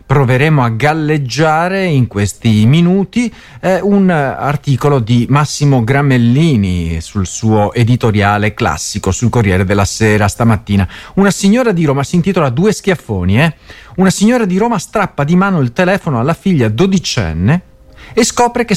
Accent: native